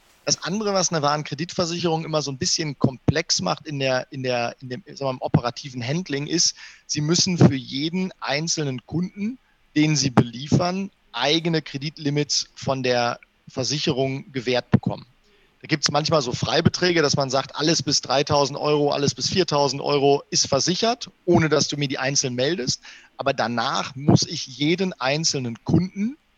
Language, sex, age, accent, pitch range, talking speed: German, male, 40-59, German, 135-165 Hz, 160 wpm